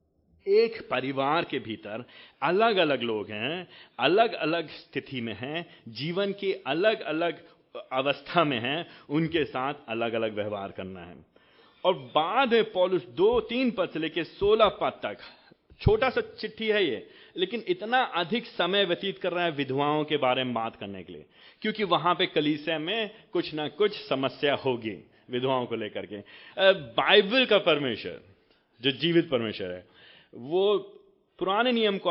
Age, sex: 30-49, male